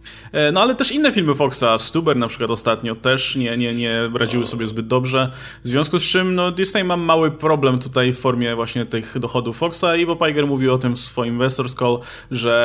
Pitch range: 125-170 Hz